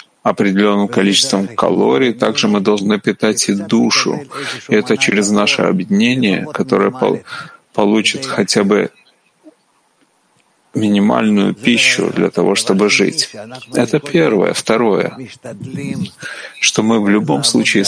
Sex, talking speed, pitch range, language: male, 105 wpm, 105-140 Hz, Russian